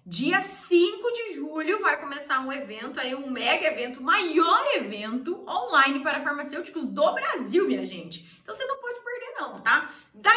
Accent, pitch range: Brazilian, 260-370 Hz